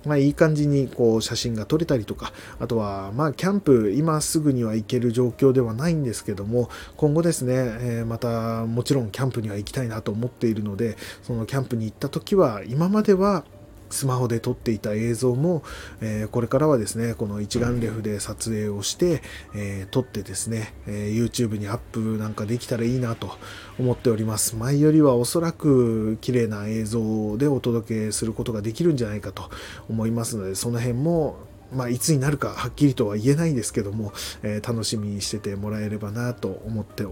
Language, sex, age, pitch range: Japanese, male, 20-39, 105-130 Hz